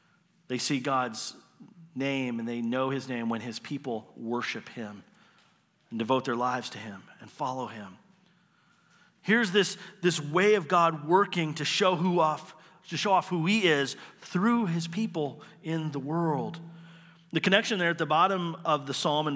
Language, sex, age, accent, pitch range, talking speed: English, male, 40-59, American, 150-185 Hz, 175 wpm